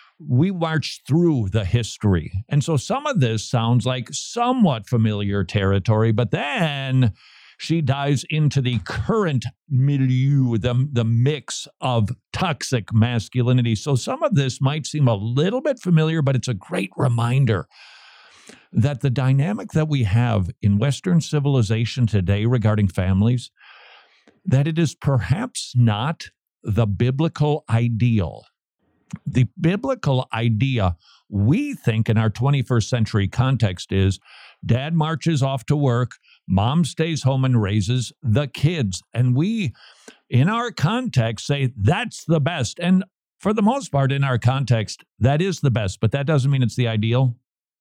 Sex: male